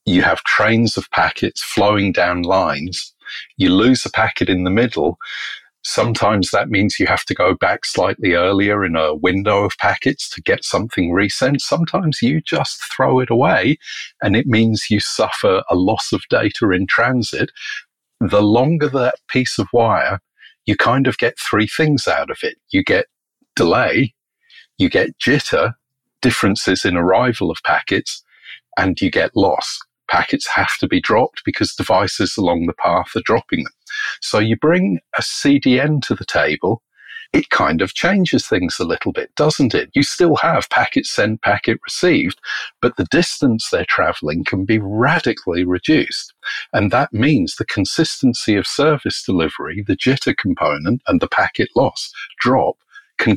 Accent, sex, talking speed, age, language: British, male, 165 wpm, 40-59, English